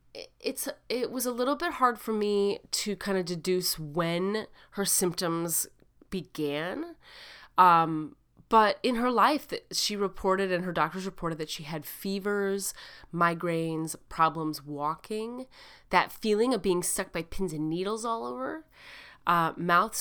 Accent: American